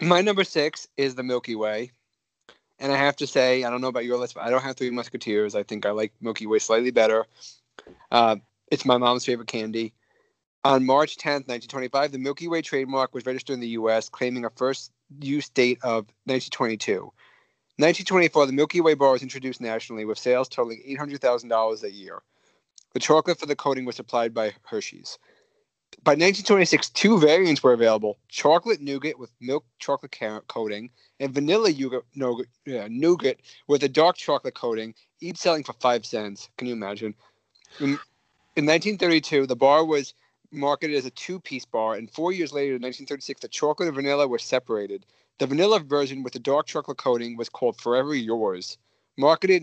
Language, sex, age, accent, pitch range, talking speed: English, male, 30-49, American, 120-150 Hz, 175 wpm